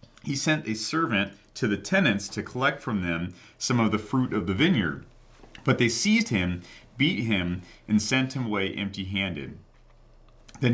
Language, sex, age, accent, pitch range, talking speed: English, male, 40-59, American, 100-130 Hz, 170 wpm